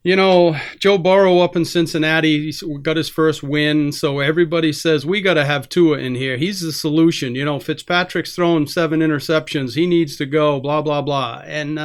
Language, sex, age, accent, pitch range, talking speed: English, male, 40-59, American, 150-195 Hz, 195 wpm